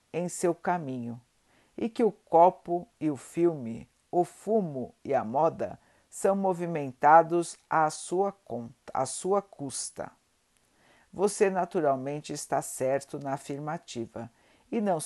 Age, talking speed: 60-79, 125 wpm